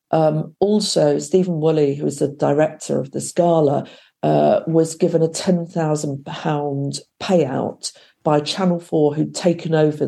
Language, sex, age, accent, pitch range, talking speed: English, female, 50-69, British, 140-175 Hz, 150 wpm